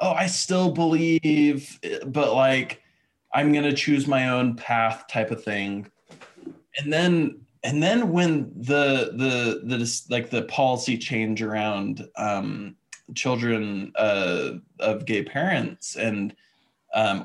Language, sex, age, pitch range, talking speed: English, male, 20-39, 125-165 Hz, 125 wpm